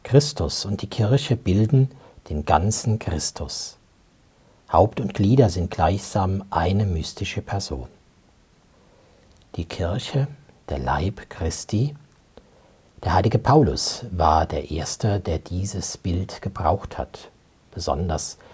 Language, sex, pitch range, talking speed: German, male, 85-125 Hz, 105 wpm